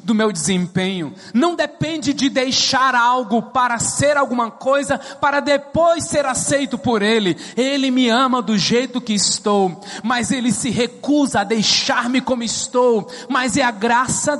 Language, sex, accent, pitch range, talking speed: English, male, Brazilian, 195-270 Hz, 155 wpm